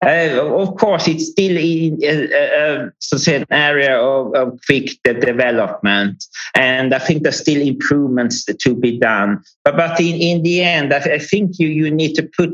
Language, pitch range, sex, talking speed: English, 120-155 Hz, male, 190 wpm